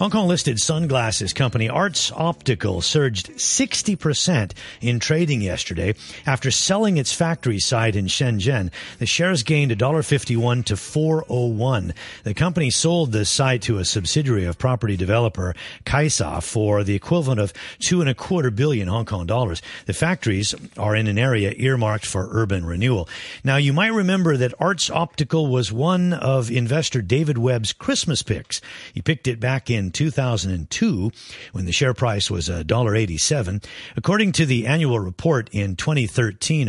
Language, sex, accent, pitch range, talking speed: English, male, American, 105-145 Hz, 150 wpm